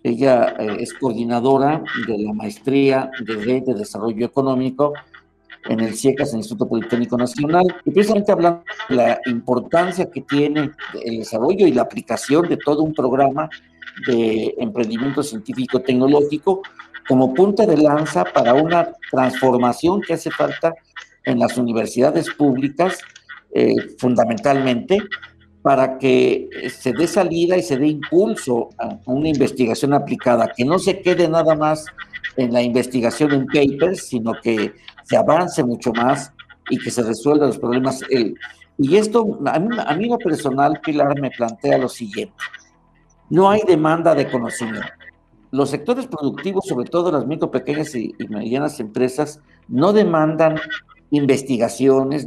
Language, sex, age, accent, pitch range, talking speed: Spanish, male, 50-69, Mexican, 125-165 Hz, 140 wpm